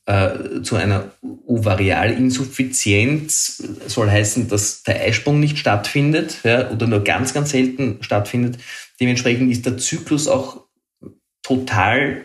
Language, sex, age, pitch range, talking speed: German, male, 30-49, 105-125 Hz, 120 wpm